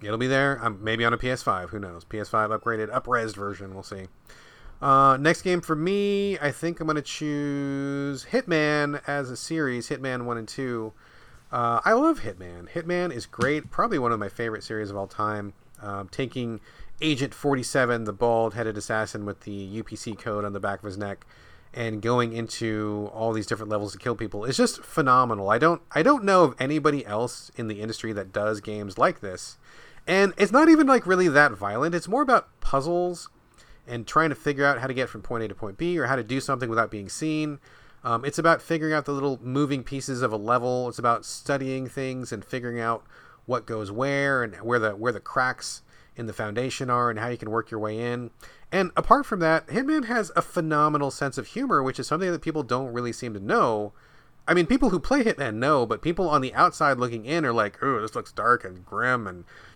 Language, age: English, 30-49